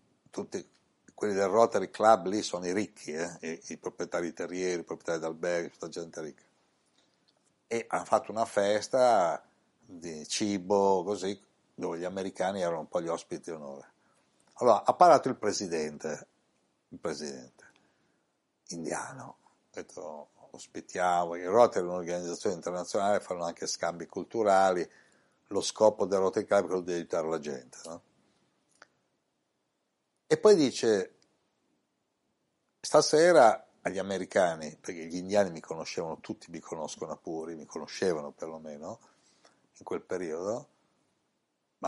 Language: Italian